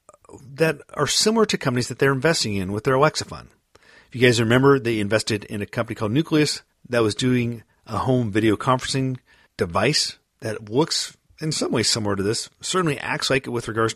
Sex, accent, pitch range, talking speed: male, American, 105-135 Hz, 195 wpm